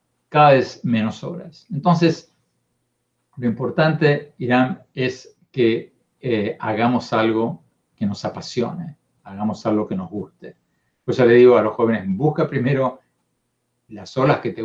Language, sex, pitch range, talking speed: Spanish, male, 110-150 Hz, 140 wpm